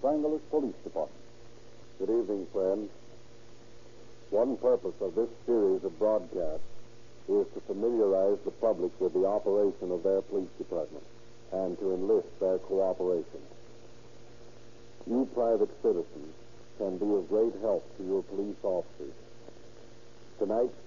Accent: American